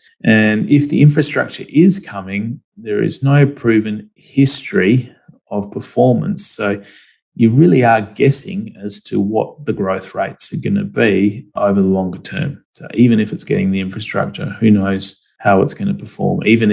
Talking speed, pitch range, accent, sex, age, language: 170 wpm, 100-140 Hz, Australian, male, 20-39, English